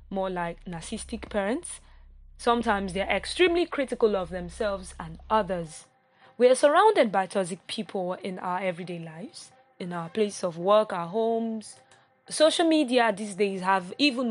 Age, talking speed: 20-39, 145 wpm